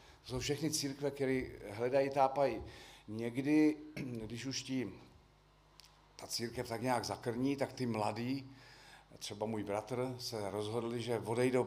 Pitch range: 110-140 Hz